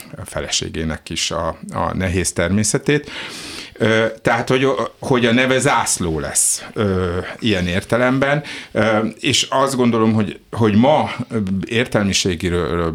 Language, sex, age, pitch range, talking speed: Hungarian, male, 50-69, 85-110 Hz, 100 wpm